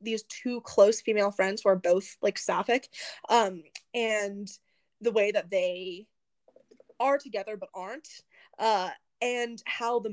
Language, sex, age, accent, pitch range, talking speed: English, female, 20-39, American, 195-240 Hz, 140 wpm